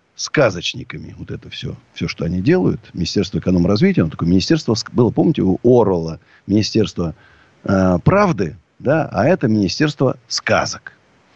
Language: Russian